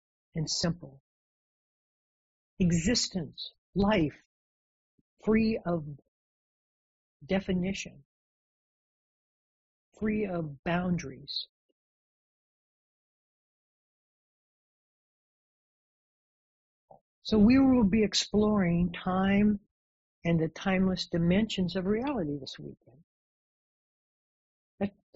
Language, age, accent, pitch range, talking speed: English, 60-79, American, 165-210 Hz, 60 wpm